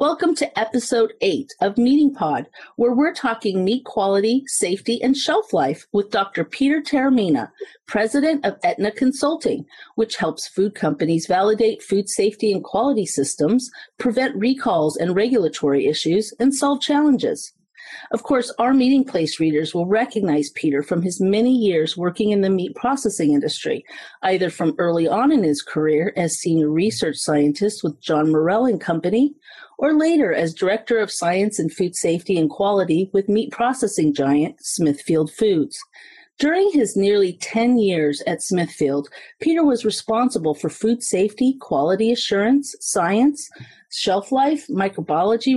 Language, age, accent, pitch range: English, 40-59, American, 180-265 Hz